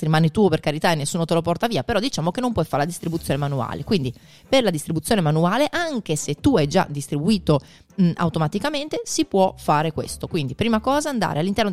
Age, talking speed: 30-49, 205 wpm